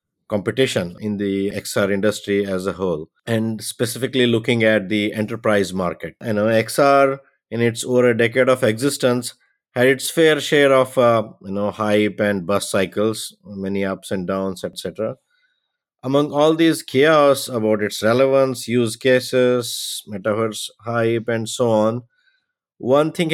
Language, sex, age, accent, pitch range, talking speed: English, male, 50-69, Indian, 100-125 Hz, 150 wpm